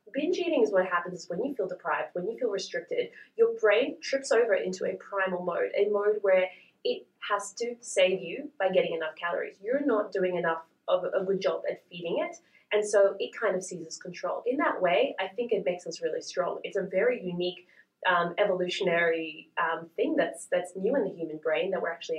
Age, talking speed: 20-39, 215 wpm